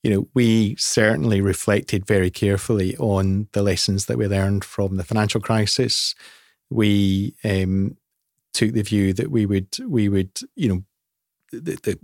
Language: English